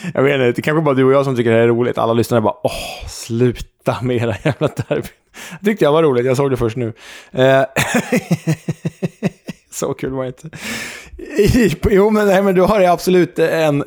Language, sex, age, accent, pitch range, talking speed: Swedish, male, 20-39, Norwegian, 120-150 Hz, 195 wpm